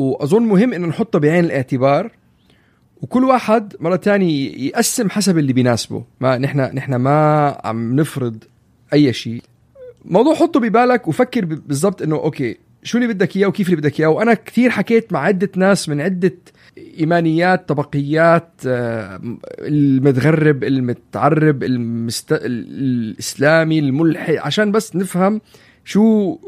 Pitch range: 135-195 Hz